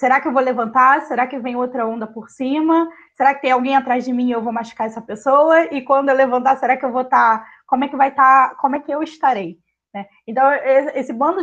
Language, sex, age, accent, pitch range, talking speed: Portuguese, female, 20-39, Brazilian, 245-295 Hz, 250 wpm